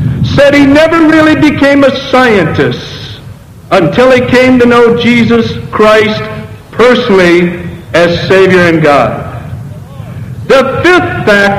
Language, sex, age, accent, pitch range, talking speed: Italian, male, 60-79, American, 185-275 Hz, 120 wpm